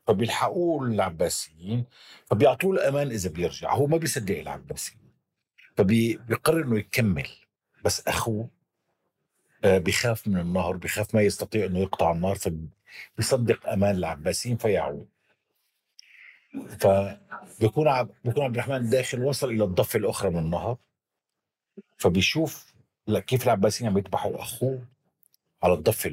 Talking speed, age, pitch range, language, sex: 115 wpm, 50-69, 95-120 Hz, Arabic, male